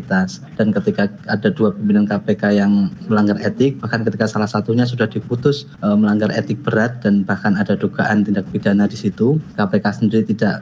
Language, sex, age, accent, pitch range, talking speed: Indonesian, male, 20-39, native, 105-130 Hz, 170 wpm